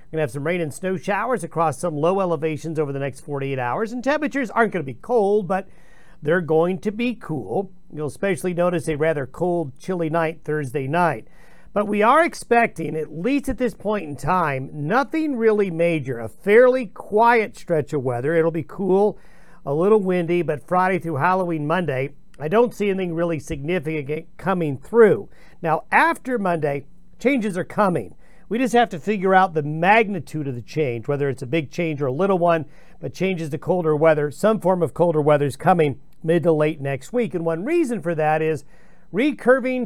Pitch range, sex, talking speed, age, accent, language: 155-205 Hz, male, 195 wpm, 50-69, American, English